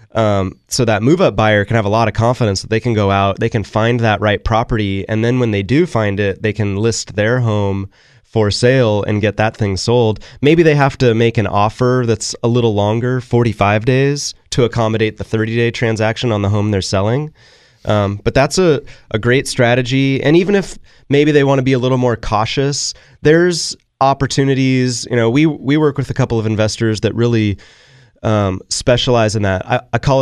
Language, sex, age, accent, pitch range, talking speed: English, male, 20-39, American, 105-130 Hz, 205 wpm